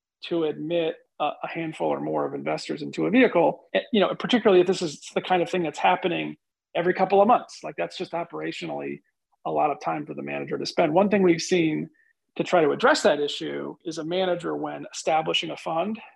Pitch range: 160-200 Hz